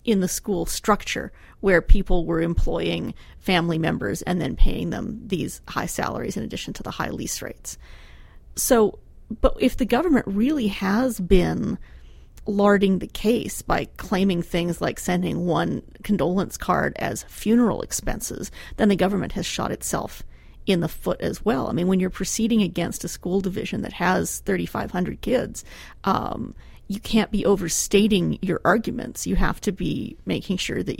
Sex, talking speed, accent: female, 165 wpm, American